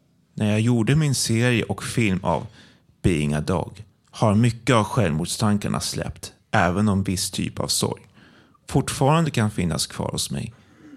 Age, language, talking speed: 30-49, Swedish, 155 wpm